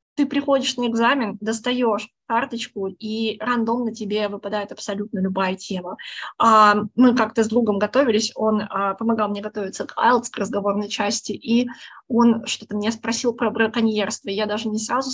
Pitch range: 210-245 Hz